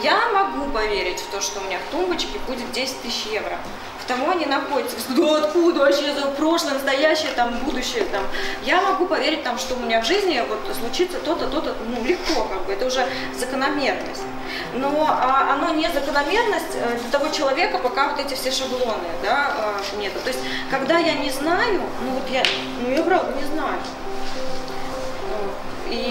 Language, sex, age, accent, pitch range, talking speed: Russian, female, 20-39, native, 240-305 Hz, 180 wpm